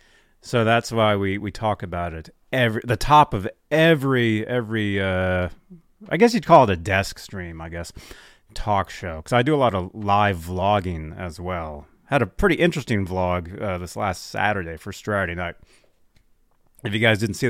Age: 30-49